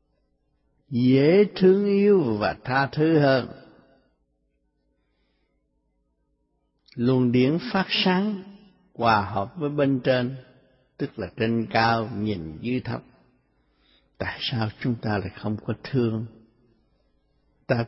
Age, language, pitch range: 60-79, Italian, 105-145 Hz